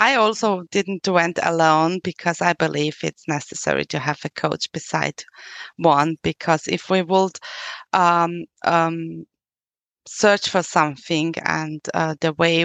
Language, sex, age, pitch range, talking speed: English, female, 20-39, 155-180 Hz, 140 wpm